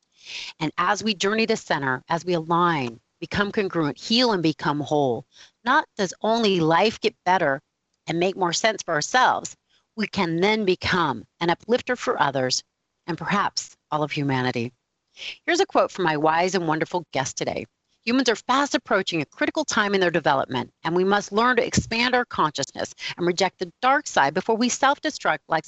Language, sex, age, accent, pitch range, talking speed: English, female, 40-59, American, 155-220 Hz, 180 wpm